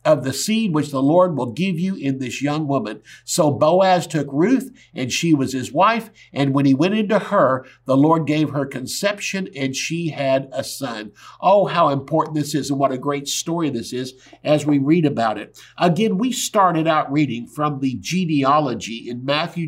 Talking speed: 200 wpm